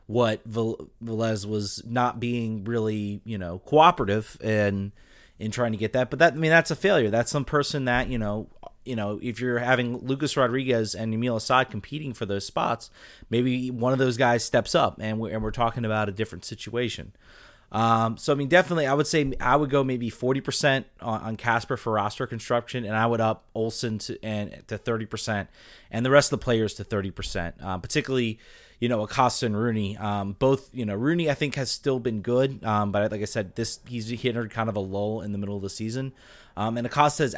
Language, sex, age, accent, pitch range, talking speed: English, male, 30-49, American, 105-130 Hz, 225 wpm